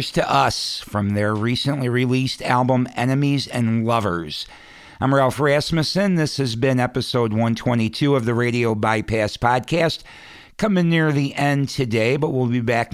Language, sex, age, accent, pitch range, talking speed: English, male, 50-69, American, 115-140 Hz, 150 wpm